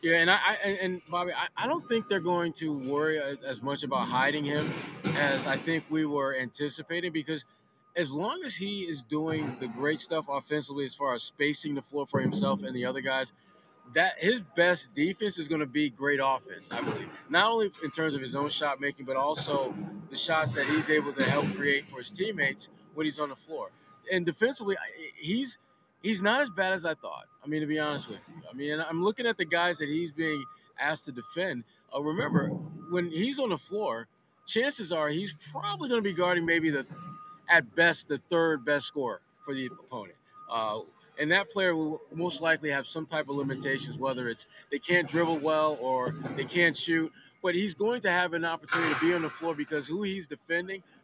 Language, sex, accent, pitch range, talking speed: English, male, American, 145-180 Hz, 210 wpm